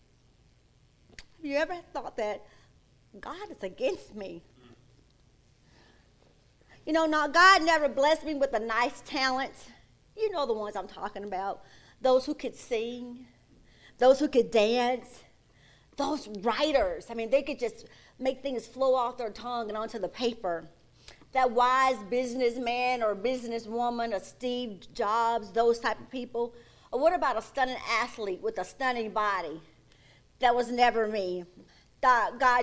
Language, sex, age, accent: English, female, 40-59, American